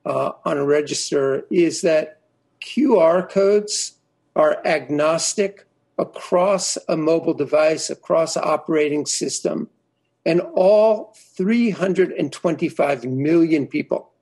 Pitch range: 155-190 Hz